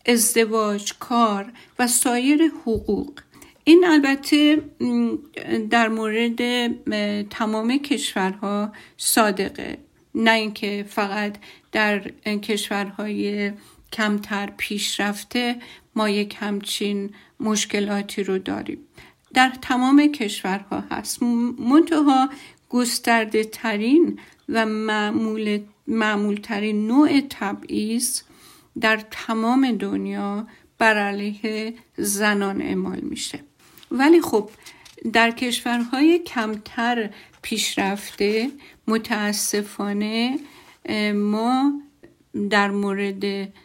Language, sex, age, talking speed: Persian, female, 50-69, 70 wpm